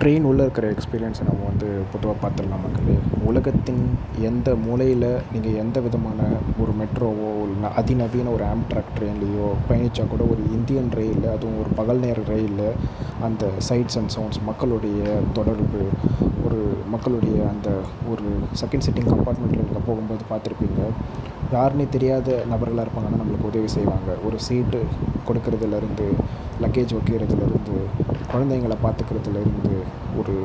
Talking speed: 120 wpm